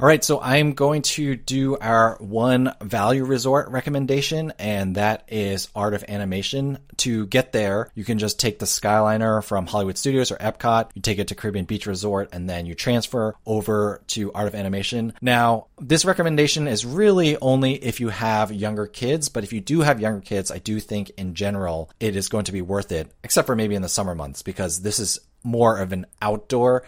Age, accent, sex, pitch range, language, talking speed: 20-39, American, male, 100-130 Hz, English, 205 wpm